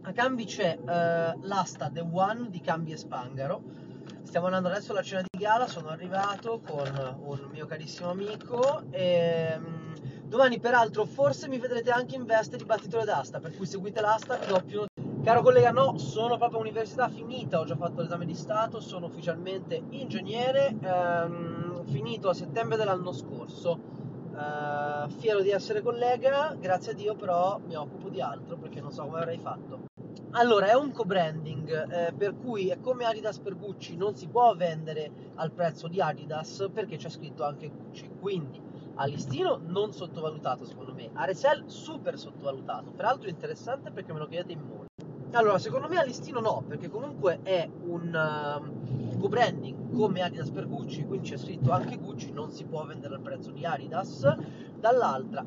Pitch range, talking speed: 155-215 Hz, 170 wpm